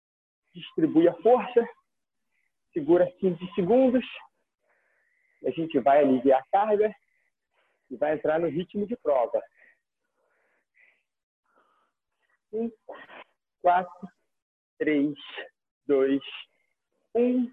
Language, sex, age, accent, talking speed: Portuguese, male, 40-59, Brazilian, 80 wpm